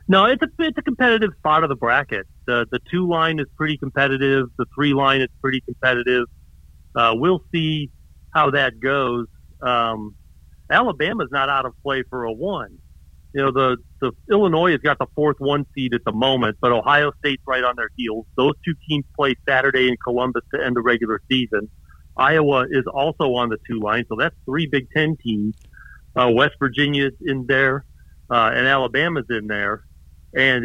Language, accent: English, American